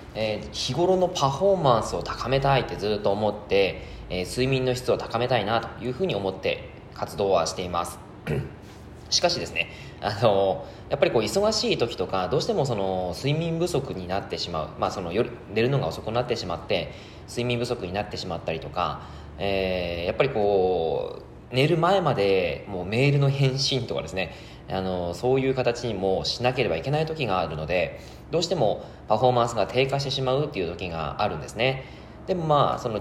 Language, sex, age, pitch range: Japanese, male, 20-39, 95-135 Hz